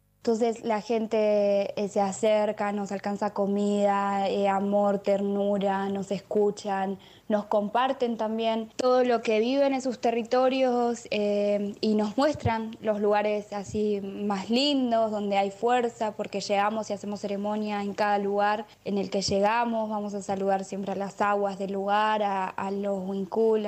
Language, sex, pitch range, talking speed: Spanish, female, 205-230 Hz, 155 wpm